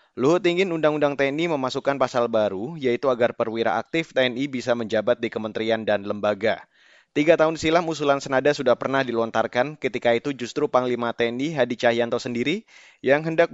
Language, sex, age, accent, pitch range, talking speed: Indonesian, male, 20-39, native, 115-145 Hz, 160 wpm